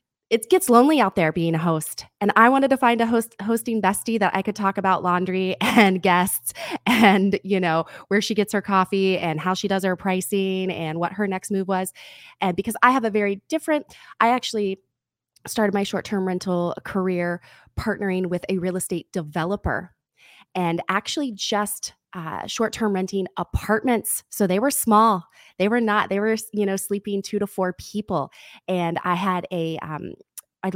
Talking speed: 185 wpm